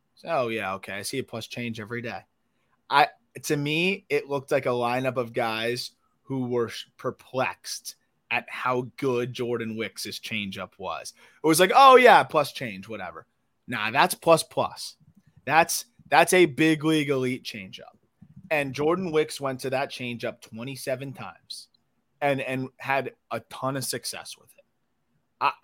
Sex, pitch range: male, 120-150 Hz